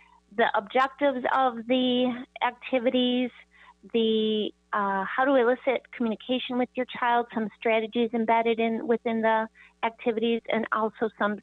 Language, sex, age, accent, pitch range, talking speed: English, female, 30-49, American, 205-250 Hz, 125 wpm